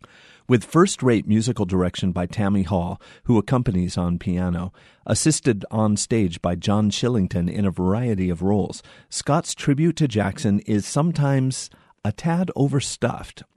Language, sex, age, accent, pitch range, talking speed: English, male, 40-59, American, 100-125 Hz, 135 wpm